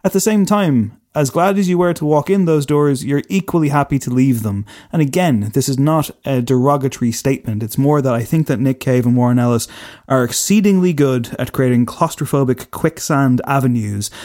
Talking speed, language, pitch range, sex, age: 200 wpm, English, 120-140 Hz, male, 30-49